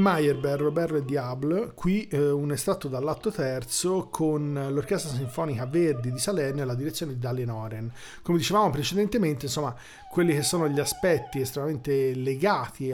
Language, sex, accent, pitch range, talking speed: Italian, male, native, 135-165 Hz, 155 wpm